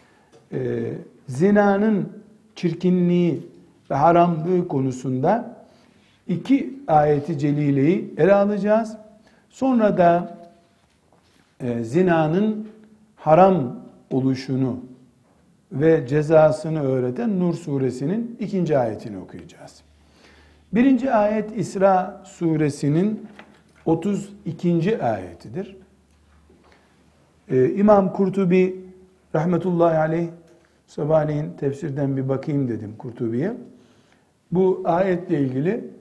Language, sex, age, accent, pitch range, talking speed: Turkish, male, 60-79, native, 135-190 Hz, 70 wpm